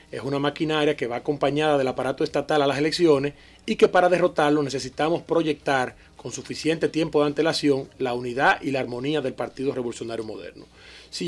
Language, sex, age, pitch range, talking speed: Spanish, male, 30-49, 135-165 Hz, 175 wpm